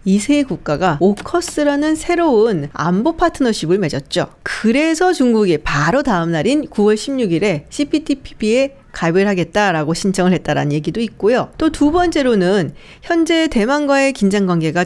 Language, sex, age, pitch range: Korean, female, 40-59, 175-290 Hz